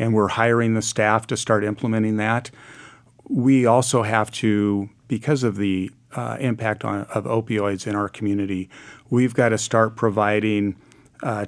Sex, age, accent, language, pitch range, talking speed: male, 50-69, American, English, 105-120 Hz, 155 wpm